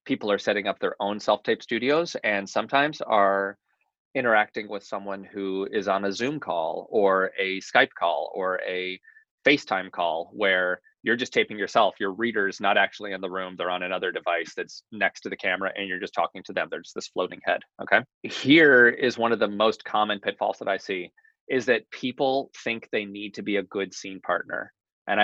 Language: English